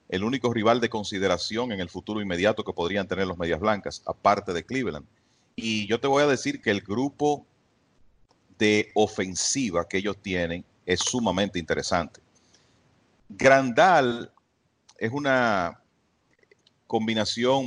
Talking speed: 130 wpm